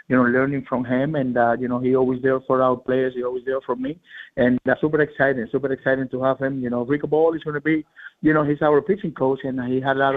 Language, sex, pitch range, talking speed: English, male, 130-140 Hz, 290 wpm